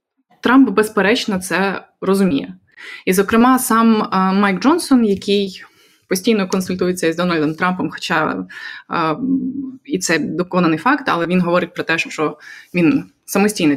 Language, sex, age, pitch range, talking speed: Ukrainian, female, 20-39, 175-250 Hz, 130 wpm